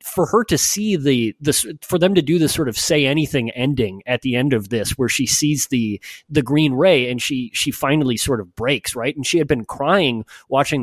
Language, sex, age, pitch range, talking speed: English, male, 30-49, 120-150 Hz, 235 wpm